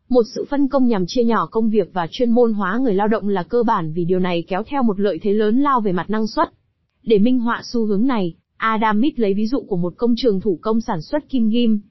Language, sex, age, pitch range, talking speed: Vietnamese, female, 20-39, 195-250 Hz, 270 wpm